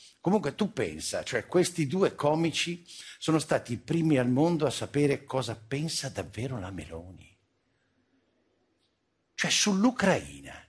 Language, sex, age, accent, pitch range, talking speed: Italian, male, 60-79, native, 105-150 Hz, 125 wpm